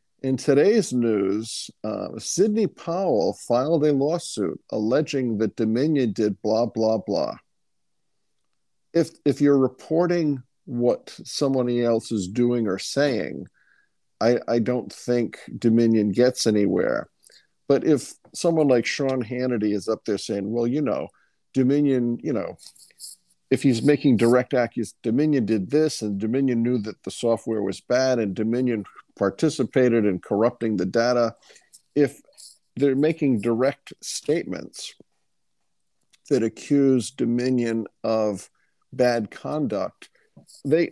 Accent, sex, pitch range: American, male, 110-135 Hz